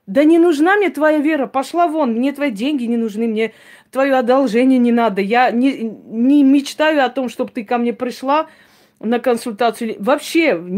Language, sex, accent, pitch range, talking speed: Russian, female, native, 225-295 Hz, 180 wpm